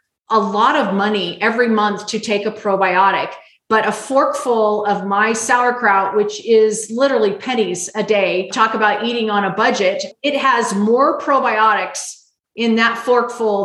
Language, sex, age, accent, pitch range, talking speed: English, female, 30-49, American, 215-280 Hz, 155 wpm